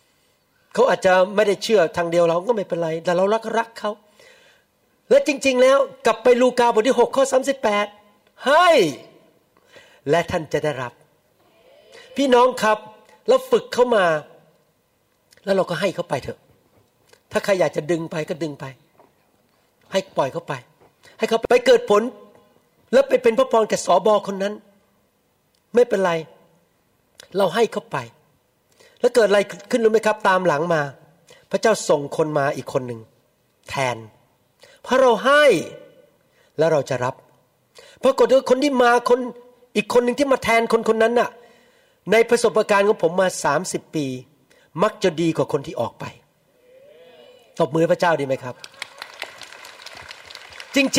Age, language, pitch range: 60-79, Thai, 170-265 Hz